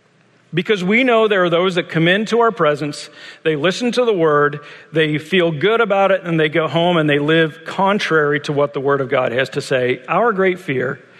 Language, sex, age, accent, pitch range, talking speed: English, male, 50-69, American, 145-180 Hz, 220 wpm